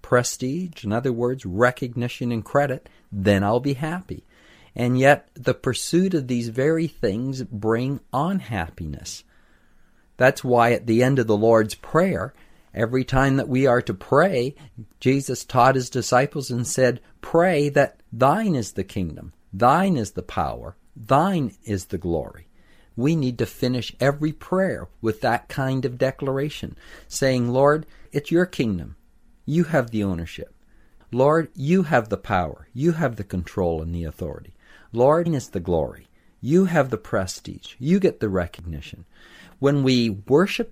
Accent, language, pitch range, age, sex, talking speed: American, English, 105-140 Hz, 50-69, male, 155 wpm